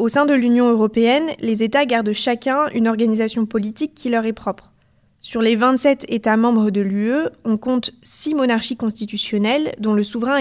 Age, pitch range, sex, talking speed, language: 20-39, 210-255 Hz, female, 180 wpm, French